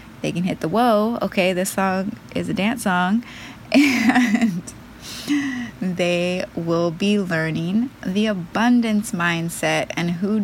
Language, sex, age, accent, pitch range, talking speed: English, female, 20-39, American, 165-215 Hz, 125 wpm